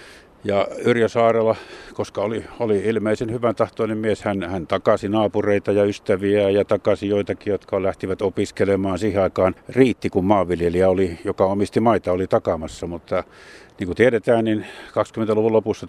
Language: Finnish